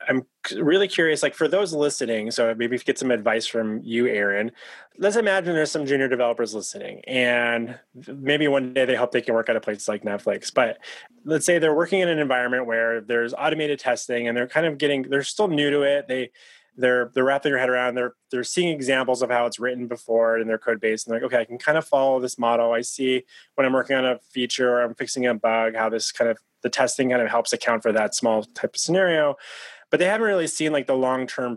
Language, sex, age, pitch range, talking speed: English, male, 20-39, 115-140 Hz, 240 wpm